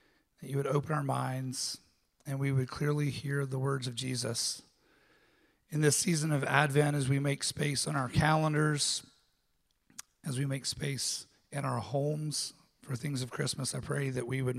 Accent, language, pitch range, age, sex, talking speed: American, English, 130-145 Hz, 40-59, male, 175 wpm